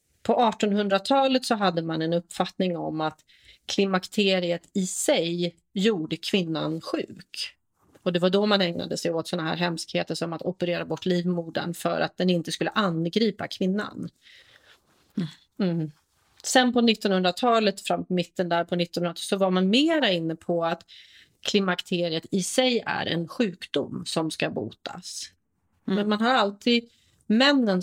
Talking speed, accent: 150 wpm, native